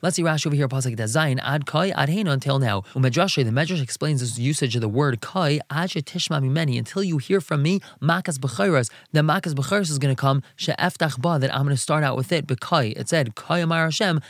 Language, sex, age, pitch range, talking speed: English, male, 20-39, 135-165 Hz, 230 wpm